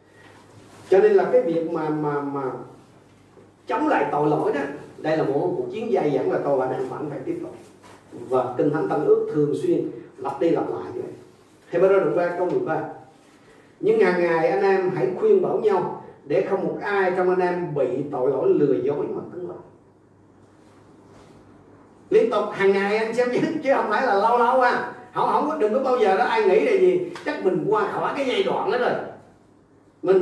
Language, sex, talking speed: Vietnamese, male, 215 wpm